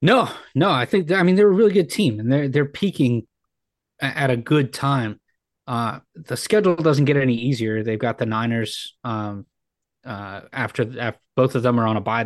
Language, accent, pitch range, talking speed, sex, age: English, American, 110-140 Hz, 200 wpm, male, 20-39